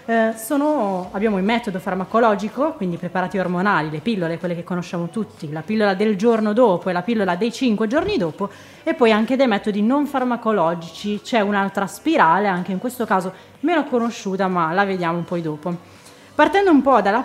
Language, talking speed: Italian, 180 wpm